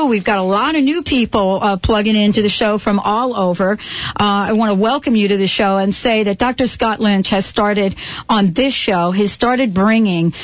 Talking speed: 220 wpm